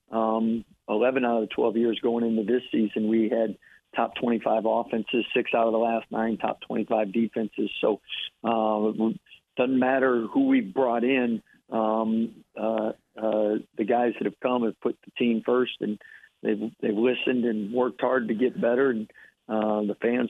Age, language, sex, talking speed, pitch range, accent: 50-69, English, male, 180 wpm, 110-125 Hz, American